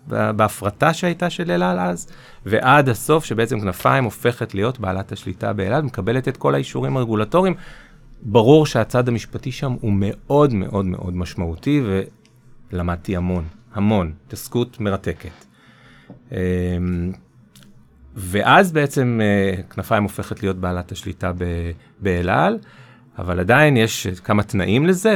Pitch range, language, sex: 95-125 Hz, Hebrew, male